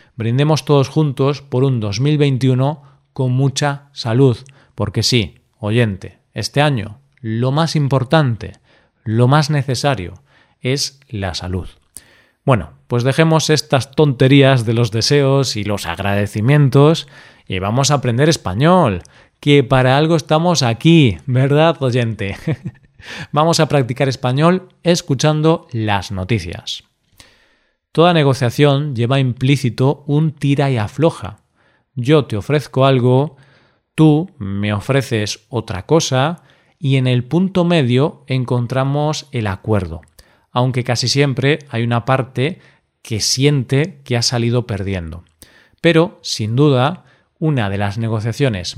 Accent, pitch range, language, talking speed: Spanish, 115-145 Hz, Spanish, 120 wpm